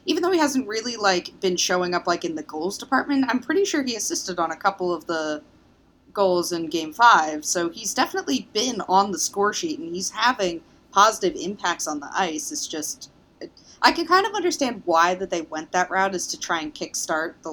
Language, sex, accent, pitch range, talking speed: English, female, American, 160-210 Hz, 215 wpm